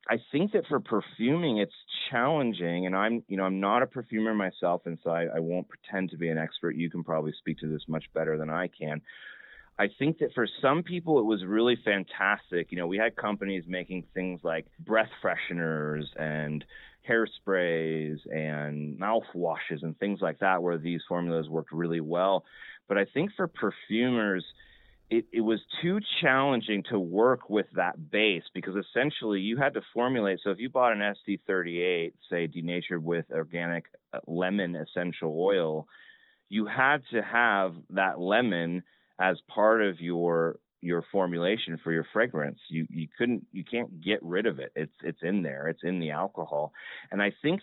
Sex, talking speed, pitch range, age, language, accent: male, 175 wpm, 85-110 Hz, 30-49, English, American